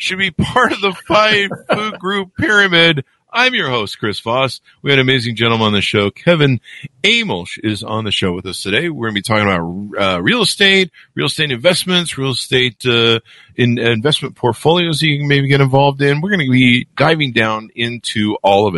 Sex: male